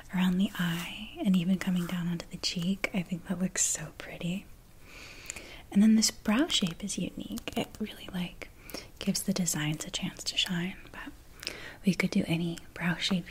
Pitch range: 180-205 Hz